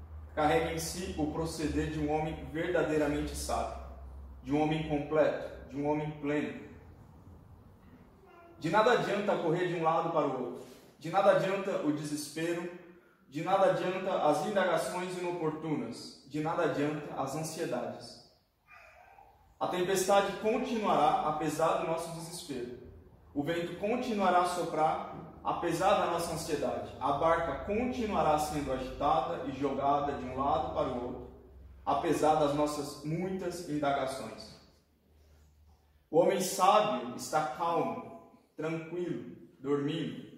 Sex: male